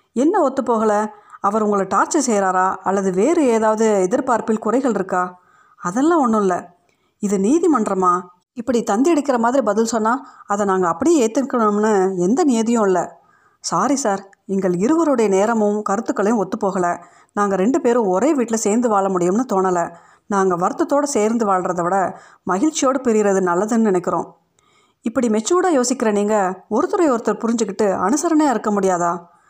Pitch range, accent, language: 195-255 Hz, native, Tamil